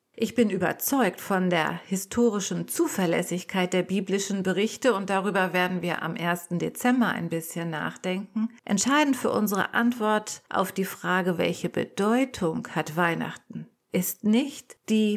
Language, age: German, 50-69